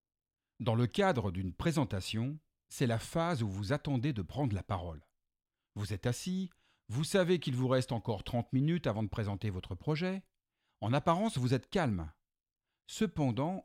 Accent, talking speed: French, 165 wpm